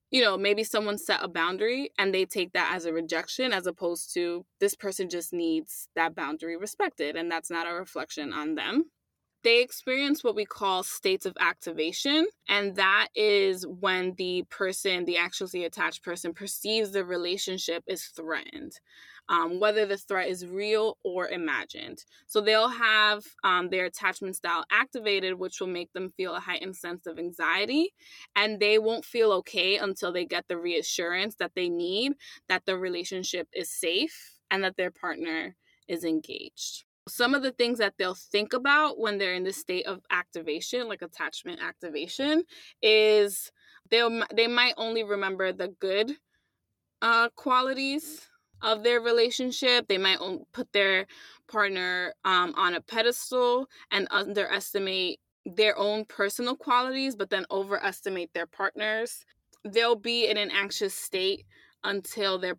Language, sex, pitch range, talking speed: English, female, 180-240 Hz, 155 wpm